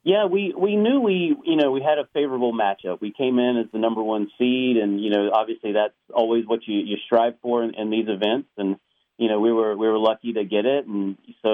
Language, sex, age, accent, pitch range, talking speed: English, male, 30-49, American, 100-115 Hz, 250 wpm